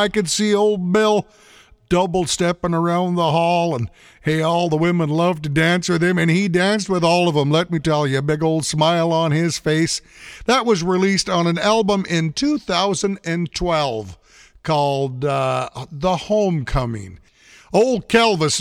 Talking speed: 165 wpm